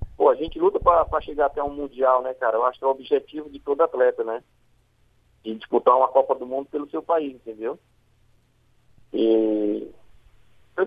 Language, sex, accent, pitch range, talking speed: Portuguese, male, Brazilian, 125-185 Hz, 190 wpm